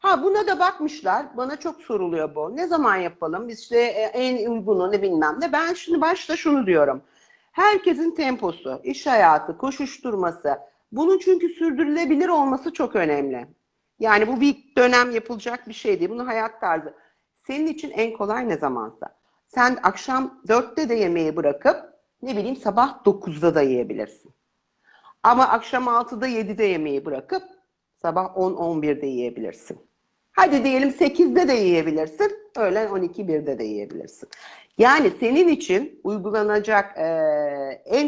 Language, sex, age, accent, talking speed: Turkish, female, 50-69, native, 135 wpm